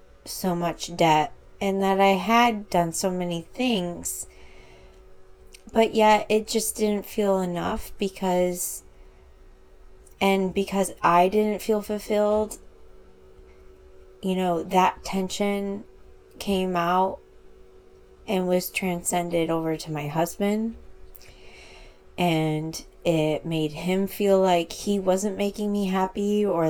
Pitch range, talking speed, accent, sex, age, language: 130-195 Hz, 110 wpm, American, female, 20-39, English